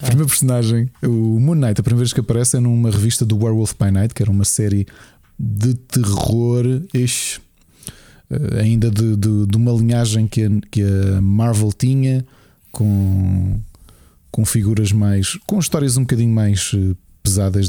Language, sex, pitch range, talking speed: Portuguese, male, 100-120 Hz, 155 wpm